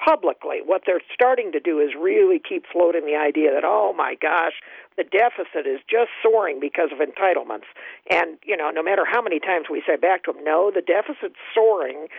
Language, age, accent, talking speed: English, 50-69, American, 200 wpm